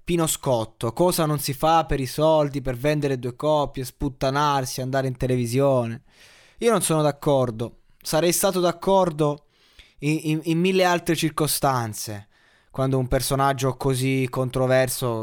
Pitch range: 120-150 Hz